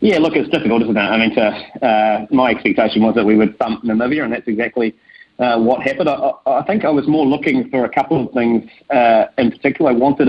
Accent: Australian